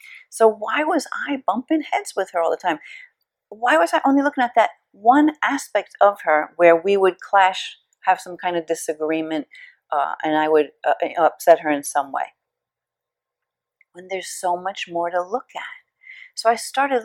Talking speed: 185 wpm